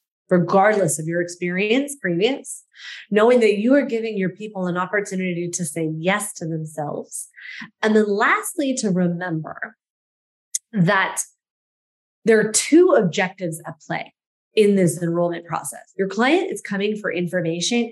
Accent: American